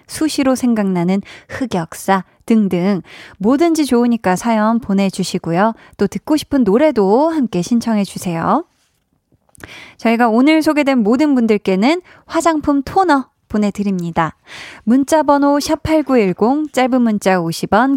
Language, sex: Korean, female